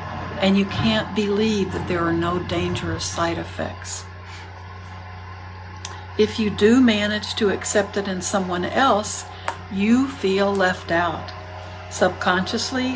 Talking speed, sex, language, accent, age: 120 wpm, female, English, American, 60-79